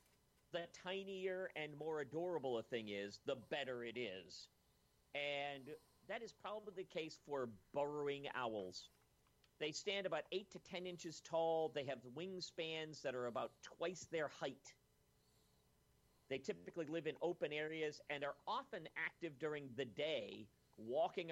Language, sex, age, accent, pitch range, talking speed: English, male, 50-69, American, 130-180 Hz, 145 wpm